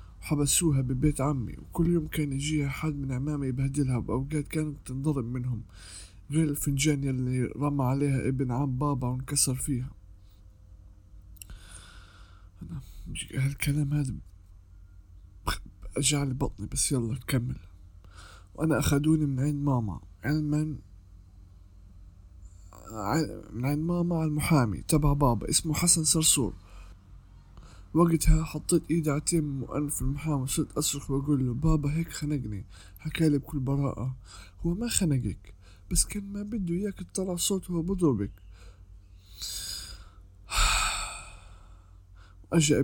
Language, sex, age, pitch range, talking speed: Arabic, male, 20-39, 95-150 Hz, 110 wpm